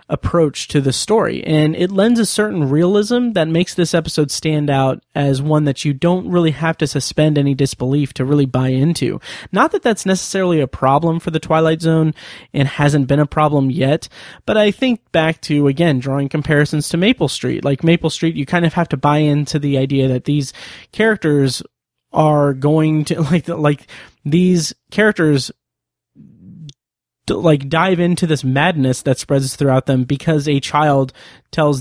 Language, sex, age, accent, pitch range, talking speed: English, male, 30-49, American, 135-165 Hz, 175 wpm